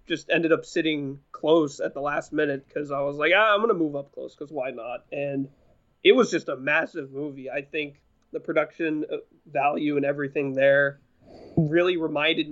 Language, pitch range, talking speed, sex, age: English, 140-170 Hz, 190 wpm, male, 20-39